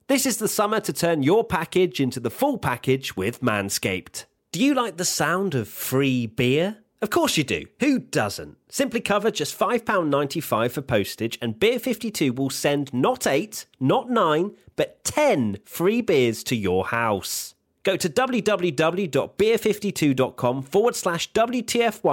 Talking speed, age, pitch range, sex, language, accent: 150 wpm, 30-49, 130-210 Hz, male, English, British